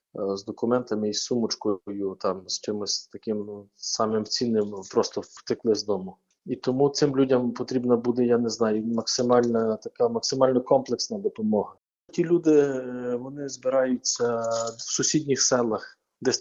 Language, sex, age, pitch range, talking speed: Ukrainian, male, 20-39, 115-140 Hz, 140 wpm